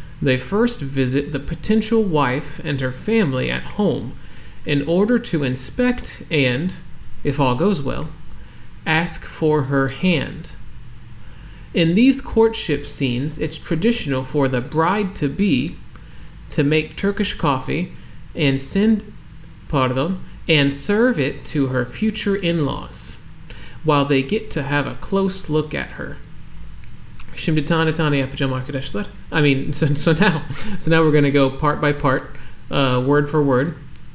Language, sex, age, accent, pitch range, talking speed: Turkish, male, 40-59, American, 130-165 Hz, 135 wpm